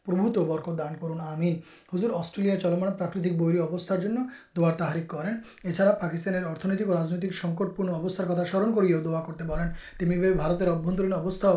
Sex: male